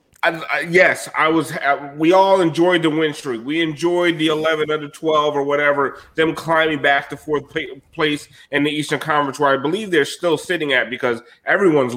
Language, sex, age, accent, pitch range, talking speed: English, male, 30-49, American, 135-165 Hz, 195 wpm